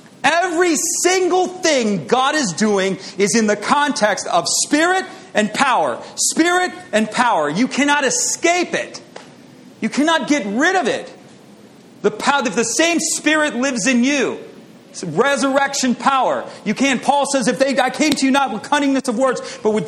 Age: 40-59